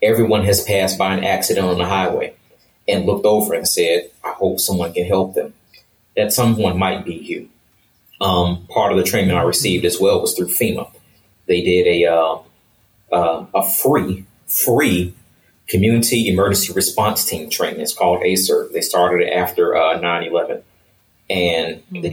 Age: 30-49